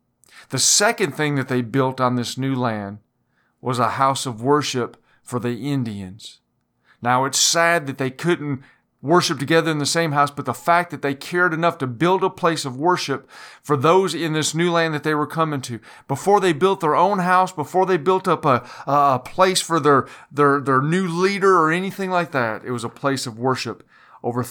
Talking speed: 205 wpm